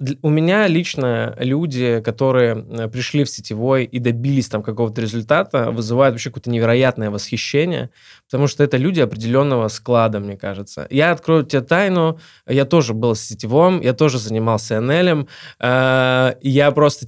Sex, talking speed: male, 150 wpm